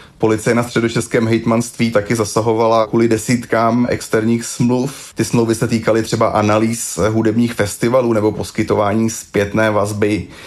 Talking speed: 125 wpm